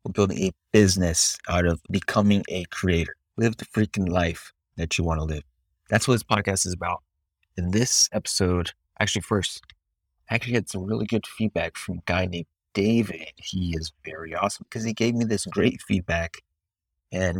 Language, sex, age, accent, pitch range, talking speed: English, male, 30-49, American, 85-105 Hz, 185 wpm